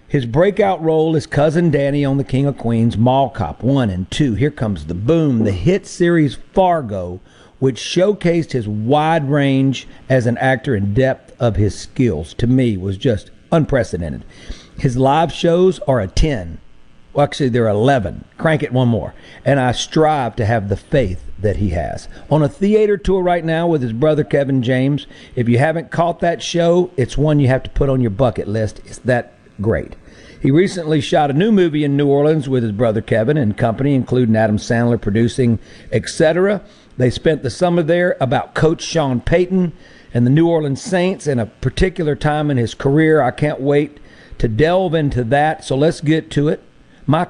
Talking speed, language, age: 190 wpm, English, 50-69